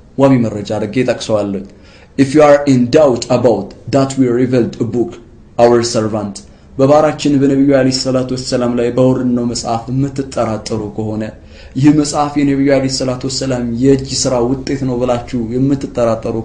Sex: male